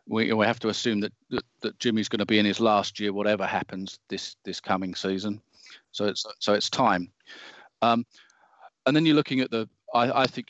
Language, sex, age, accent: English, male, 40-59, British